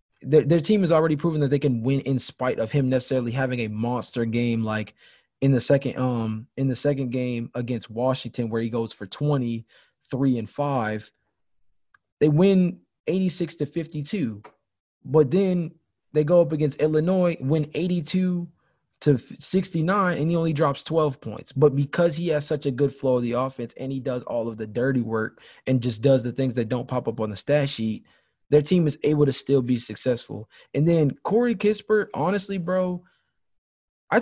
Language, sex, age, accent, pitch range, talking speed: English, male, 20-39, American, 125-155 Hz, 185 wpm